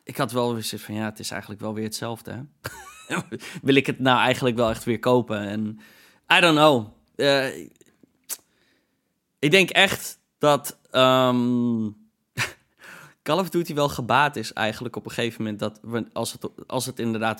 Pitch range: 110-140 Hz